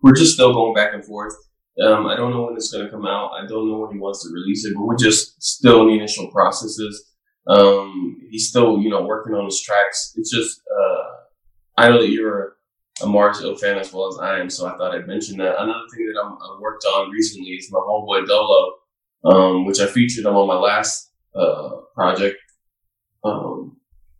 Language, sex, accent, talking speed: English, male, American, 215 wpm